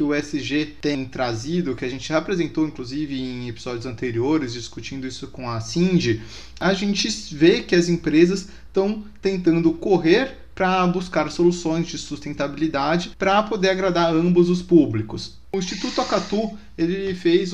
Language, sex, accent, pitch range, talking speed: Portuguese, male, Brazilian, 150-185 Hz, 145 wpm